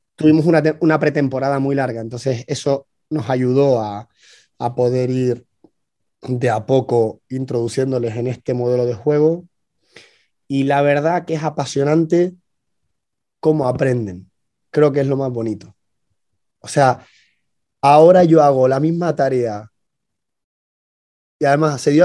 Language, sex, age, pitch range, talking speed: Spanish, male, 20-39, 125-155 Hz, 135 wpm